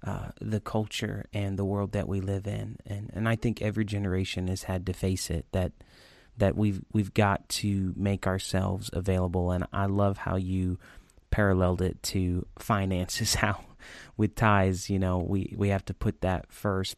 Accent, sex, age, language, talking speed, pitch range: American, male, 30-49, English, 180 wpm, 95-110 Hz